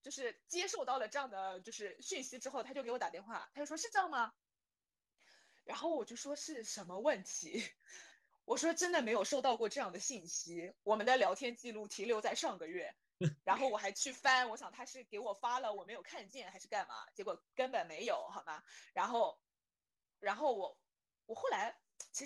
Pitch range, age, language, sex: 215-310 Hz, 20-39, Chinese, female